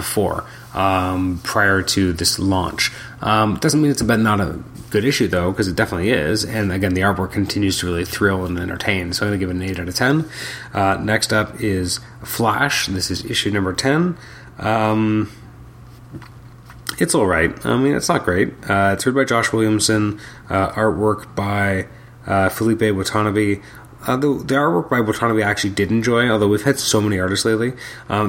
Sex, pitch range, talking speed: male, 95-115 Hz, 195 wpm